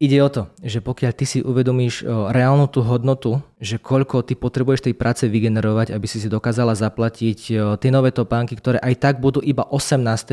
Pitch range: 105-135 Hz